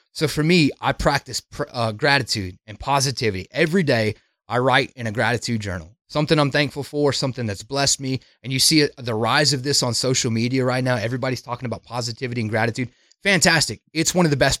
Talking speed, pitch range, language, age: 200 wpm, 115-150 Hz, English, 30-49